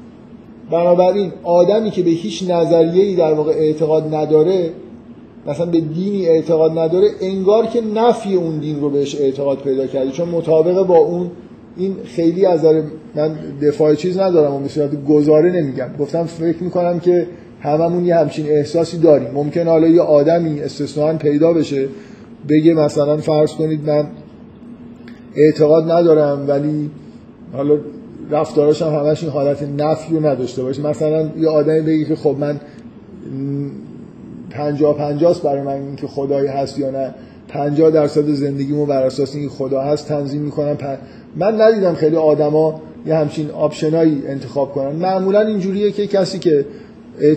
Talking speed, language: 145 wpm, Persian